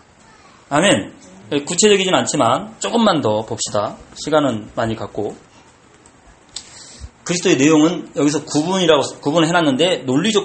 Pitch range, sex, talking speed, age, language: 150-250 Hz, male, 90 wpm, 40-59, English